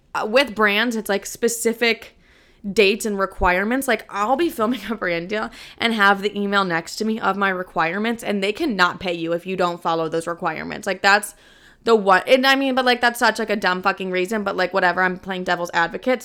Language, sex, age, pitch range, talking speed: English, female, 20-39, 185-225 Hz, 220 wpm